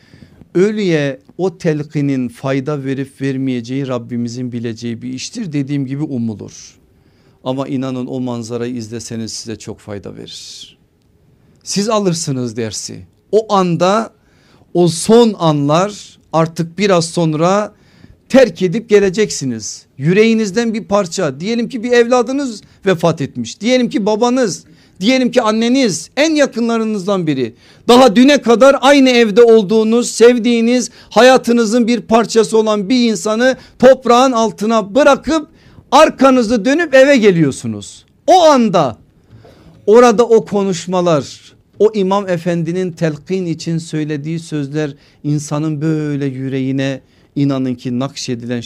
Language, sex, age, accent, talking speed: Turkish, male, 50-69, native, 115 wpm